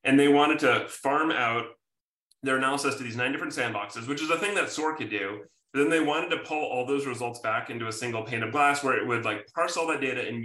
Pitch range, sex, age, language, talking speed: 115-140 Hz, male, 30-49, English, 265 wpm